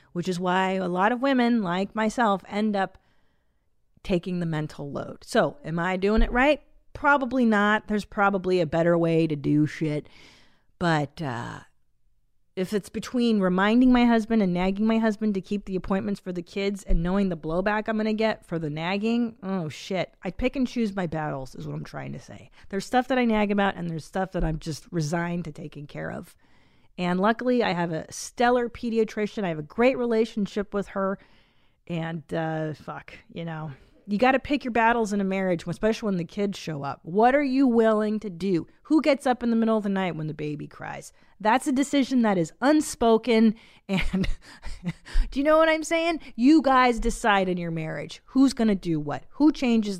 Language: English